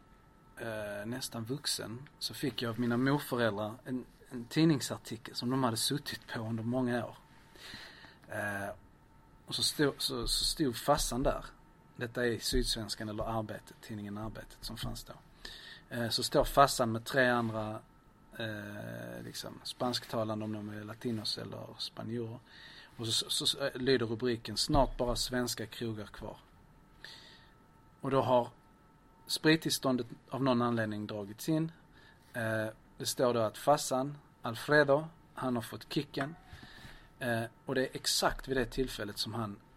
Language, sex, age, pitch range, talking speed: Swedish, male, 40-59, 110-135 Hz, 140 wpm